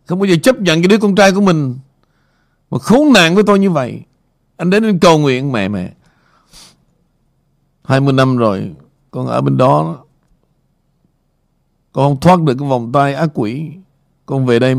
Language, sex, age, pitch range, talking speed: Vietnamese, male, 60-79, 135-175 Hz, 175 wpm